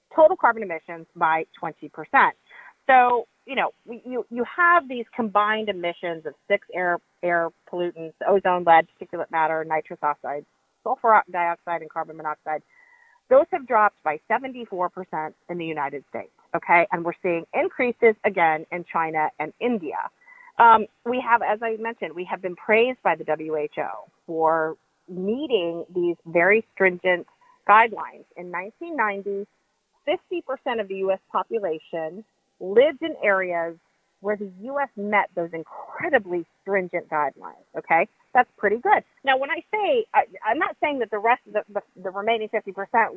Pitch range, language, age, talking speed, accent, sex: 170-240 Hz, English, 40-59, 145 wpm, American, female